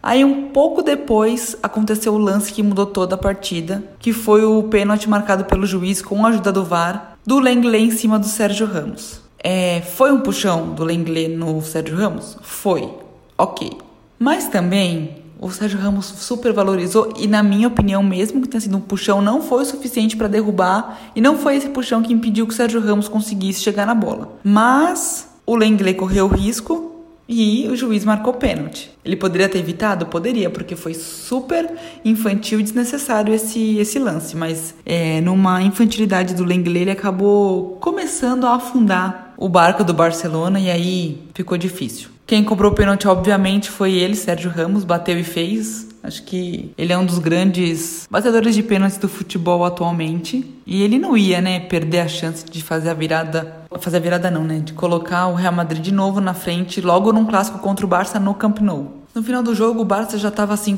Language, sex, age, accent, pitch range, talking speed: Portuguese, female, 20-39, Brazilian, 180-220 Hz, 190 wpm